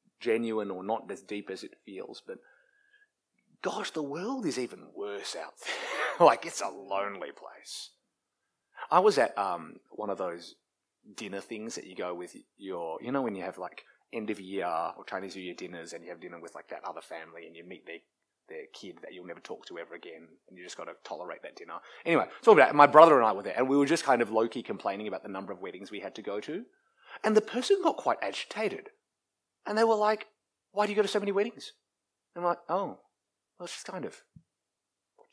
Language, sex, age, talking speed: English, male, 20-39, 225 wpm